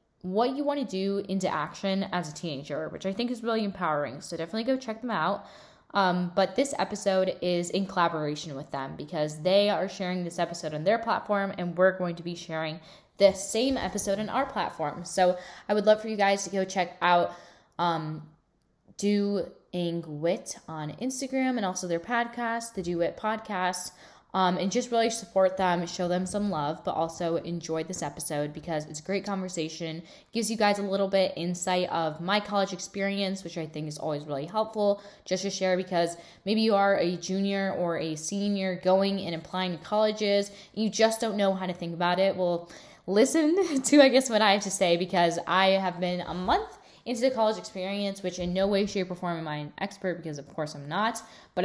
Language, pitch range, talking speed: English, 170-205 Hz, 205 wpm